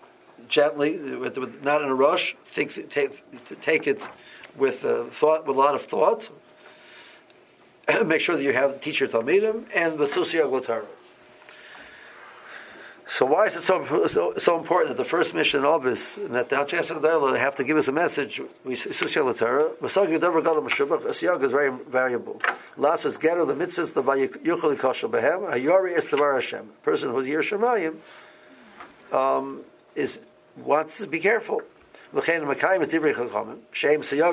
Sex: male